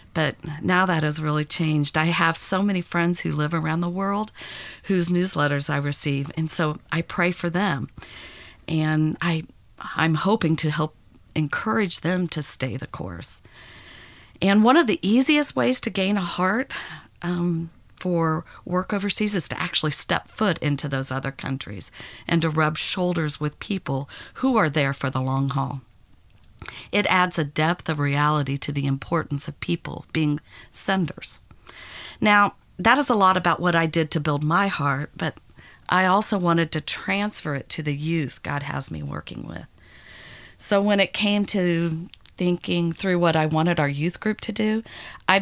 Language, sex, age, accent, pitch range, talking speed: English, female, 50-69, American, 145-185 Hz, 170 wpm